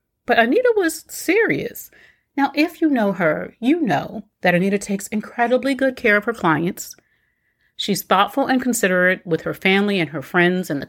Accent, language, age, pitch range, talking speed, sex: American, English, 40-59, 165-230 Hz, 175 wpm, female